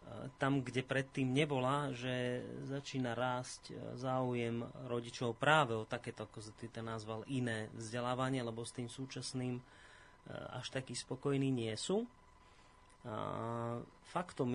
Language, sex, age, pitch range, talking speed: Slovak, male, 30-49, 115-135 Hz, 115 wpm